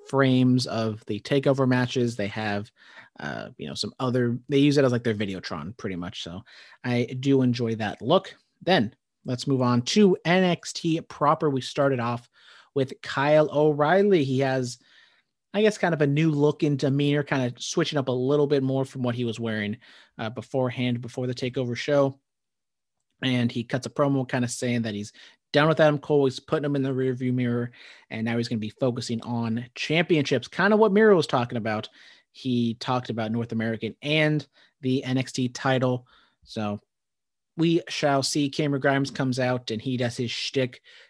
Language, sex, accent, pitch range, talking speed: English, male, American, 120-150 Hz, 190 wpm